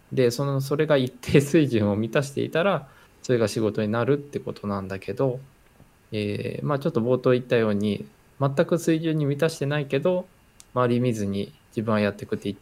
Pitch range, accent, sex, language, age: 105-145 Hz, native, male, Japanese, 20-39